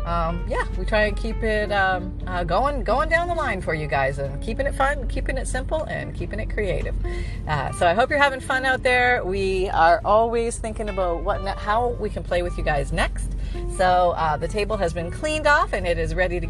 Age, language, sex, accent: 40-59, English, female, American